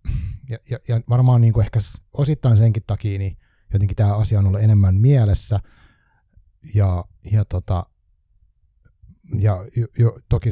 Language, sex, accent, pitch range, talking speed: Finnish, male, native, 100-115 Hz, 145 wpm